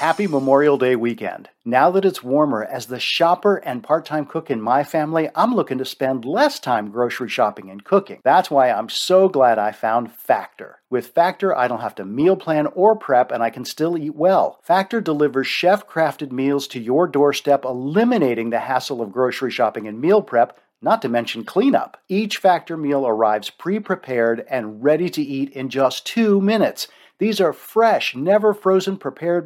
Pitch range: 130-180 Hz